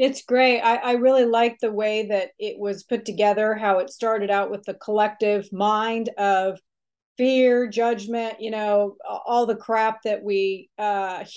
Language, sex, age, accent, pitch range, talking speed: English, female, 40-59, American, 200-245 Hz, 170 wpm